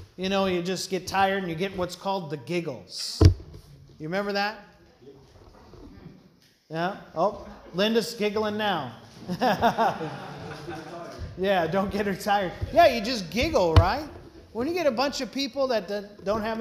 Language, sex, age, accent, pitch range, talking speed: English, male, 30-49, American, 160-205 Hz, 150 wpm